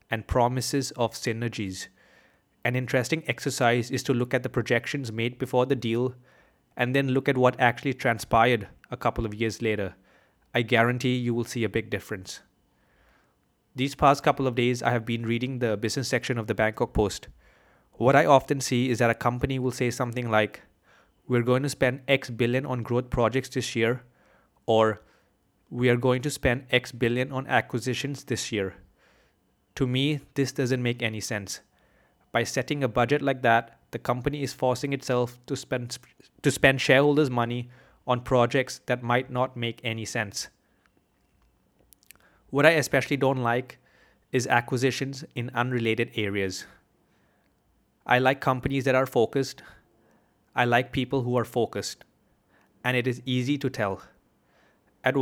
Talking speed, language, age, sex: 160 wpm, English, 30-49, male